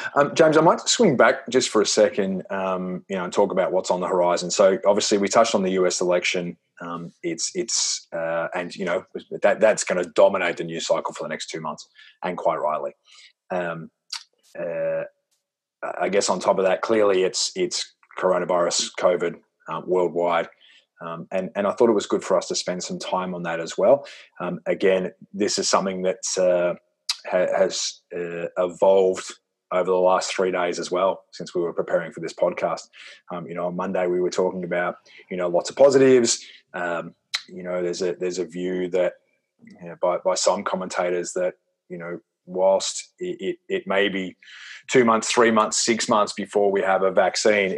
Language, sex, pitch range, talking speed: English, male, 90-100 Hz, 195 wpm